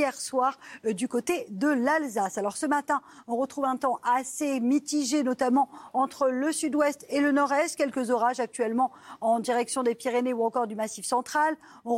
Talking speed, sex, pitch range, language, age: 180 wpm, female, 235-275 Hz, French, 40-59